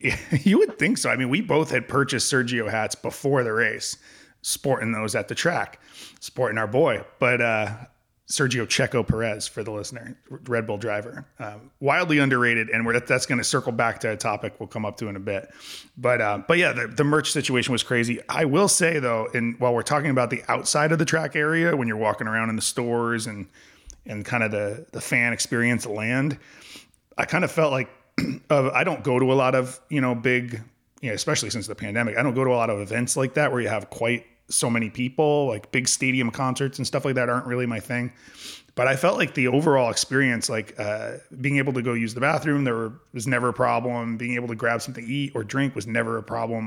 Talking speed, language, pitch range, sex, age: 235 wpm, English, 115-135 Hz, male, 30-49